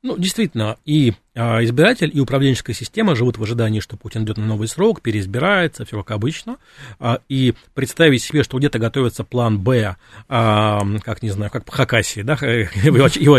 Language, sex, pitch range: Russian, male, 115-140 Hz